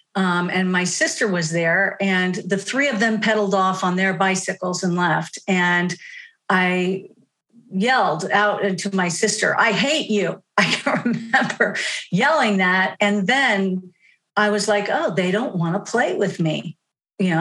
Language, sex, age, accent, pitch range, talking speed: English, female, 50-69, American, 185-230 Hz, 160 wpm